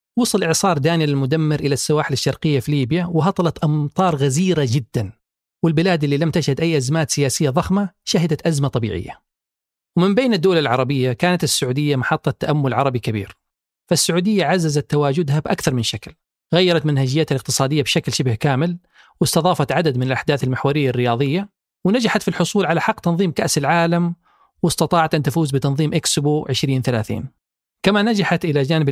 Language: Arabic